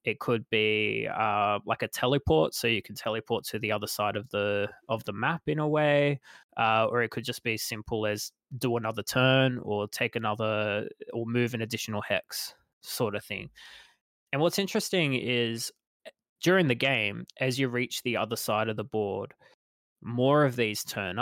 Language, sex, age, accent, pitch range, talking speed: English, male, 20-39, Australian, 105-130 Hz, 185 wpm